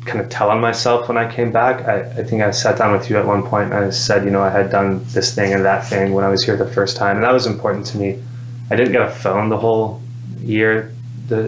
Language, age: English, 20-39